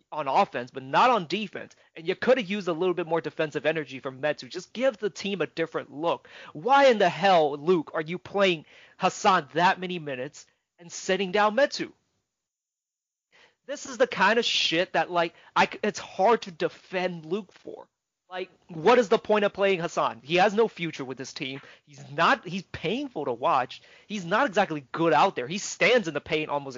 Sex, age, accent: male, 30-49, American